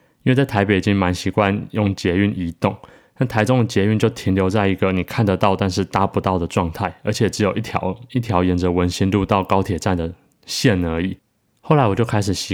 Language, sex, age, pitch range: Chinese, male, 20-39, 95-115 Hz